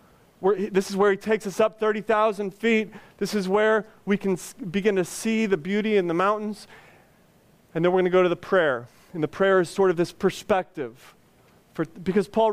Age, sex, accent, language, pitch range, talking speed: 30-49, male, American, English, 170-210 Hz, 195 wpm